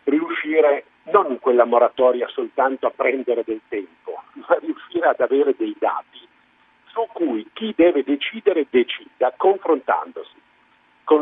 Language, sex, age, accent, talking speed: Italian, male, 50-69, native, 130 wpm